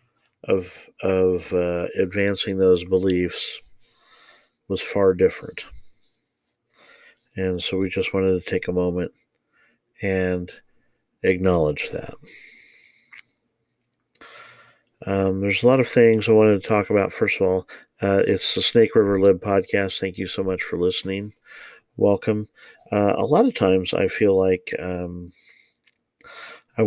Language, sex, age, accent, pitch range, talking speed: English, male, 40-59, American, 90-100 Hz, 130 wpm